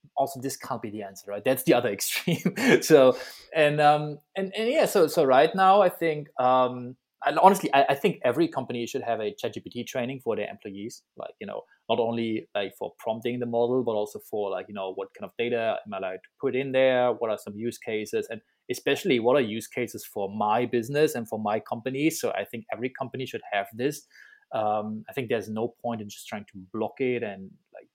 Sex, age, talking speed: male, 20-39, 230 wpm